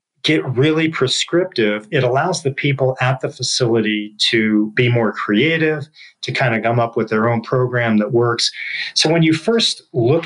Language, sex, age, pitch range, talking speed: English, male, 40-59, 115-140 Hz, 175 wpm